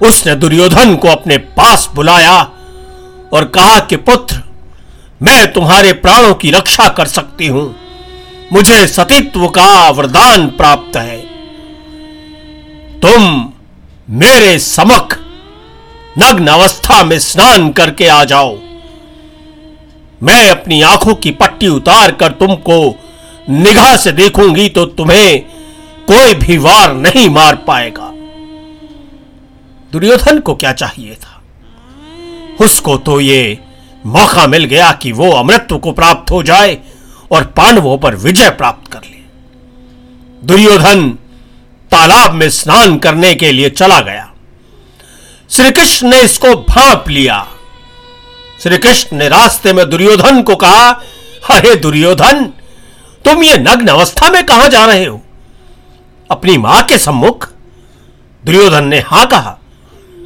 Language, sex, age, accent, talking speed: Hindi, male, 50-69, native, 120 wpm